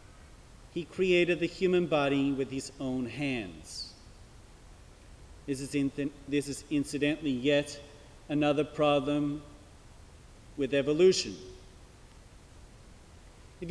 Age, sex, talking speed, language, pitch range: 40-59, male, 85 wpm, English, 130-165 Hz